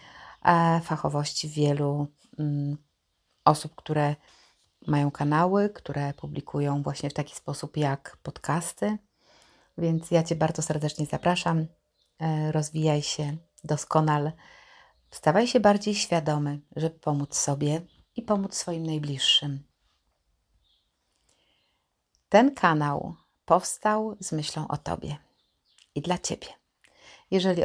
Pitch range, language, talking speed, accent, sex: 145-175 Hz, Polish, 100 wpm, native, female